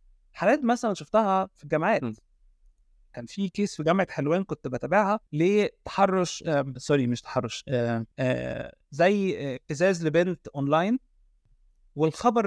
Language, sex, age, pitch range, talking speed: Arabic, male, 30-49, 140-195 Hz, 120 wpm